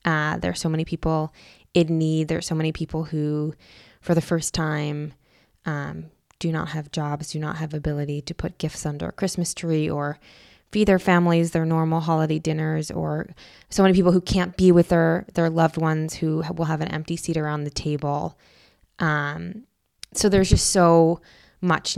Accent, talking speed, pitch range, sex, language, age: American, 190 wpm, 155-180 Hz, female, English, 20-39